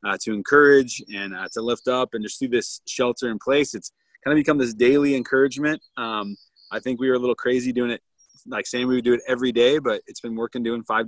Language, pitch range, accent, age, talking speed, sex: English, 110-135 Hz, American, 20-39, 250 wpm, male